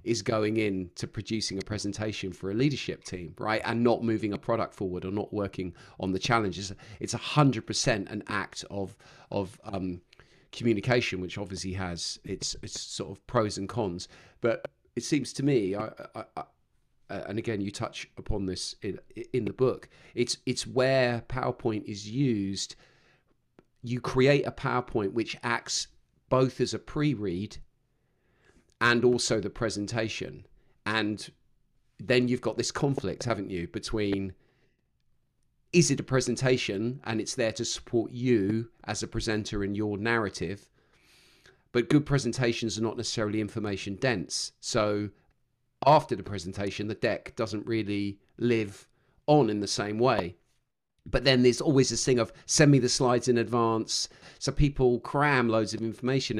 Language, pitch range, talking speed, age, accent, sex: English, 100-125 Hz, 155 wpm, 40-59, British, male